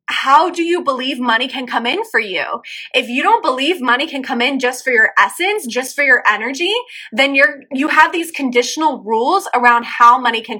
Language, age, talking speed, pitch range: English, 20-39, 215 wpm, 235-315 Hz